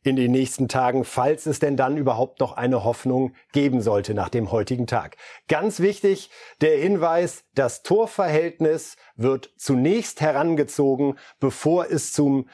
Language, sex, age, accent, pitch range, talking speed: German, male, 50-69, German, 125-170 Hz, 145 wpm